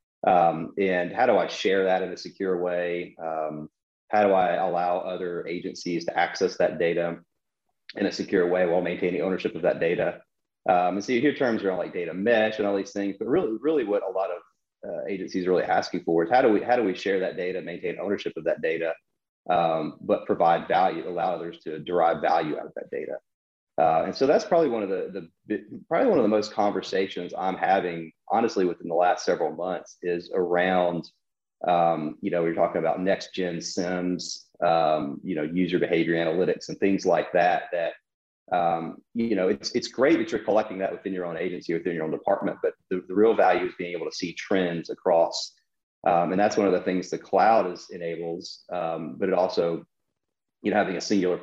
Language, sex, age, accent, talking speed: English, male, 30-49, American, 215 wpm